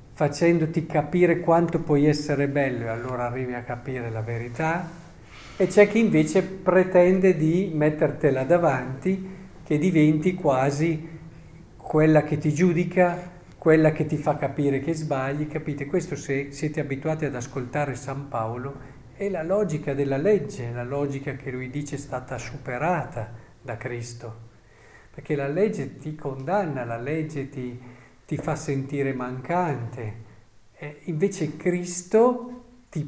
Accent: native